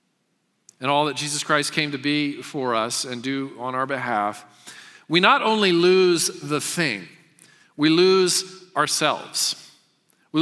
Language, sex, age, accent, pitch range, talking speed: English, male, 40-59, American, 140-175 Hz, 145 wpm